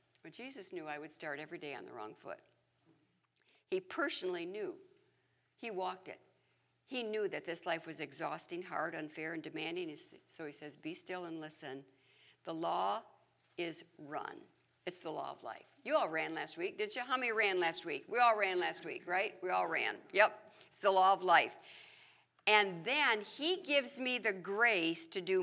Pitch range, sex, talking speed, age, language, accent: 190-280 Hz, female, 190 wpm, 60-79, English, American